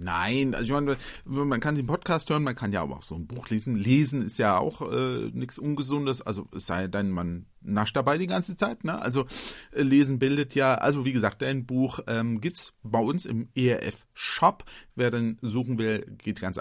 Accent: German